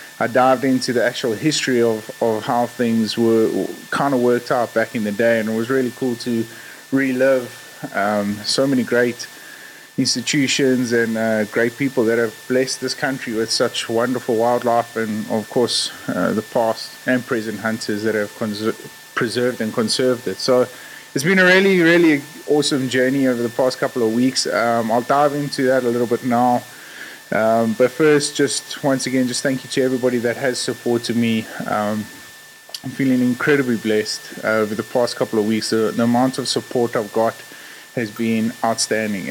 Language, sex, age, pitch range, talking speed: English, male, 20-39, 115-130 Hz, 180 wpm